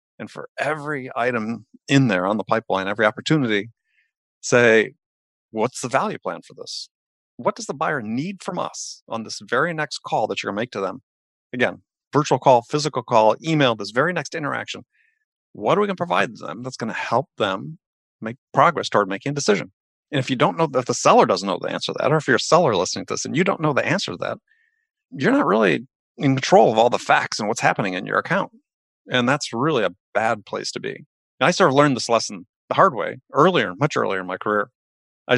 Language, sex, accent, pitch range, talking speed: English, male, American, 115-160 Hz, 230 wpm